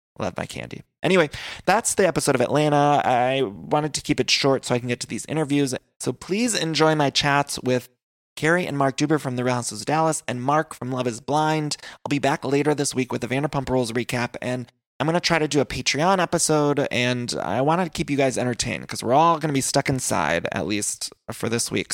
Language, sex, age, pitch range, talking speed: English, male, 20-39, 120-150 Hz, 235 wpm